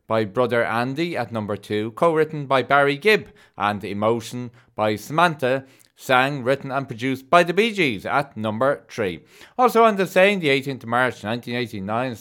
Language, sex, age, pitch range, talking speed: English, male, 30-49, 115-155 Hz, 165 wpm